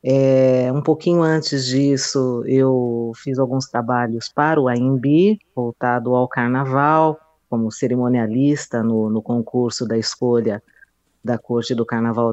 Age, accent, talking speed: 40-59, Brazilian, 125 wpm